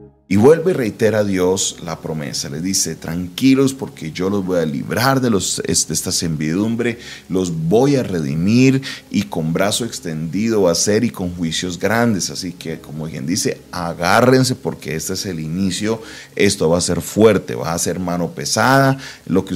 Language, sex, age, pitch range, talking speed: Spanish, male, 30-49, 80-105 Hz, 180 wpm